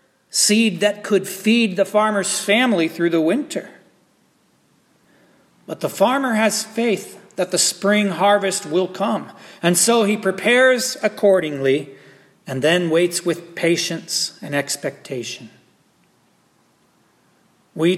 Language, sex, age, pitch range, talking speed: English, male, 40-59, 160-210 Hz, 115 wpm